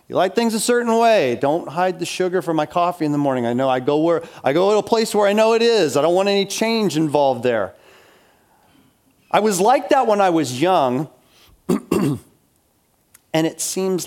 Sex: male